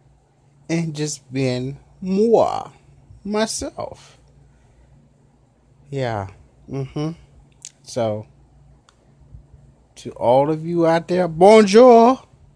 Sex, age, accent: male, 30-49, American